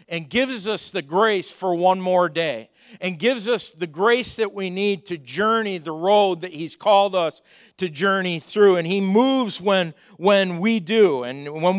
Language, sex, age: English, male, 50-69